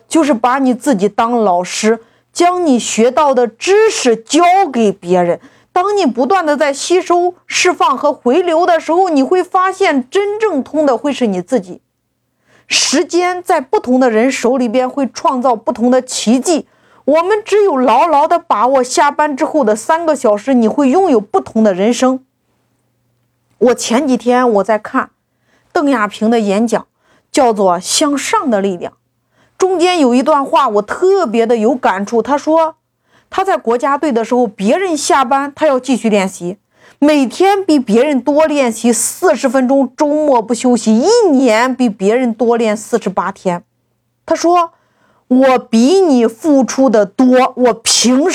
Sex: female